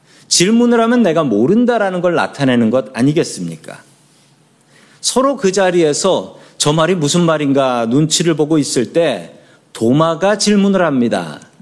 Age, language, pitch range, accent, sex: 40-59, Korean, 125-190 Hz, native, male